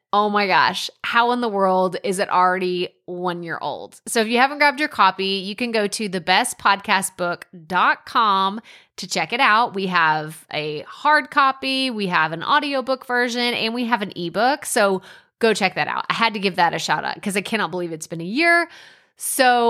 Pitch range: 185-245 Hz